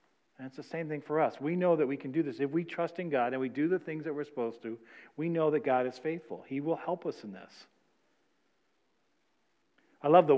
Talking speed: 250 wpm